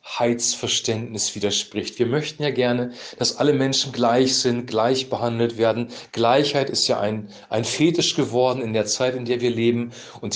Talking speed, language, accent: 170 wpm, German, German